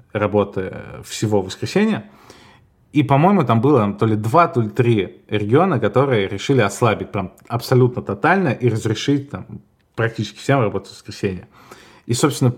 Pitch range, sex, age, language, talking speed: 100-125 Hz, male, 20-39, Russian, 135 wpm